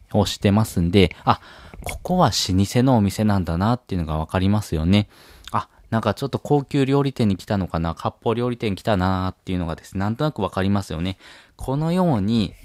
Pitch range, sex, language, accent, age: 95-125 Hz, male, Japanese, native, 20-39